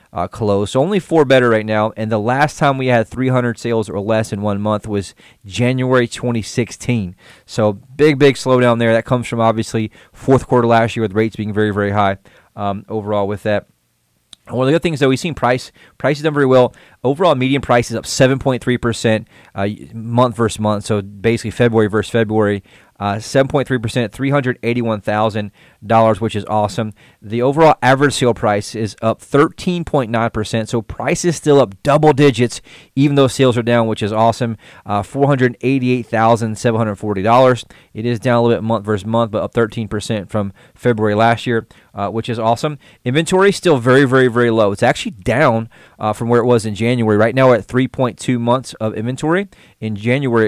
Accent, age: American, 30-49